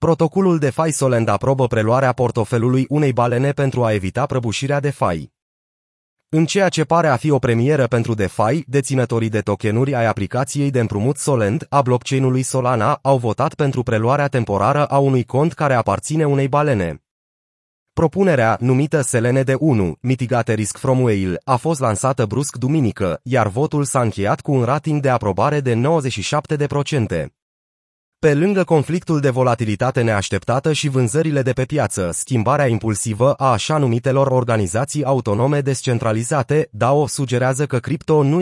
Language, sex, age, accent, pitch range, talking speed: Romanian, male, 30-49, native, 115-145 Hz, 150 wpm